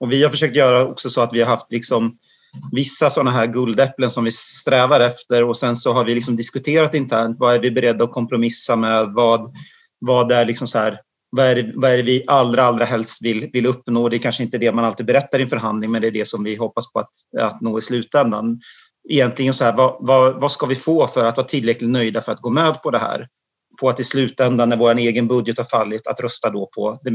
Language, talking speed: Swedish, 230 wpm